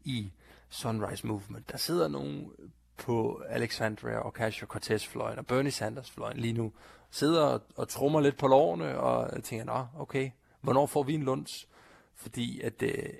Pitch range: 105-135 Hz